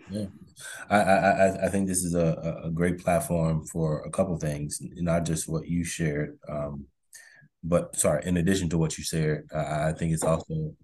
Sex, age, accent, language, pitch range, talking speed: male, 20-39, American, English, 80-90 Hz, 200 wpm